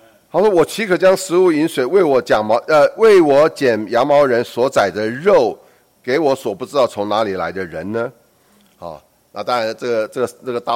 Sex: male